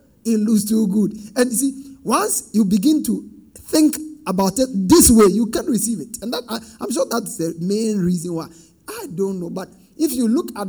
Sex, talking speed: male, 215 wpm